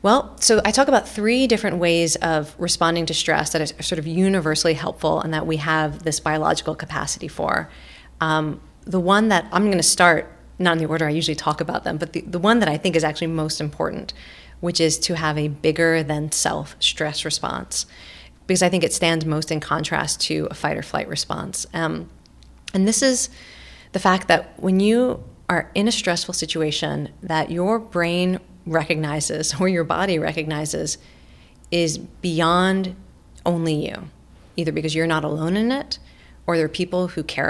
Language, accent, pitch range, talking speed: English, American, 155-185 Hz, 185 wpm